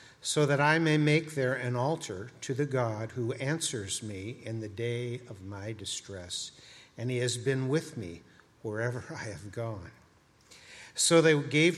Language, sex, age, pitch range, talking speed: English, male, 50-69, 115-145 Hz, 170 wpm